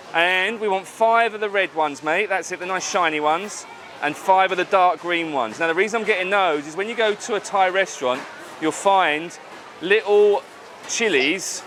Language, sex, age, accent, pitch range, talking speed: English, male, 30-49, British, 160-215 Hz, 205 wpm